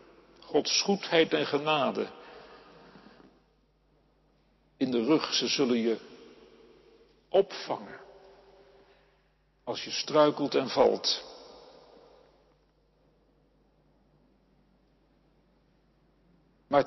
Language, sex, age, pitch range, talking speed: Dutch, male, 60-79, 165-275 Hz, 60 wpm